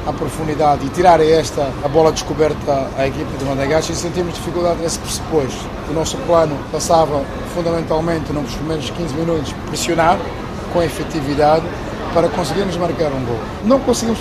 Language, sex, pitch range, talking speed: Portuguese, male, 155-180 Hz, 150 wpm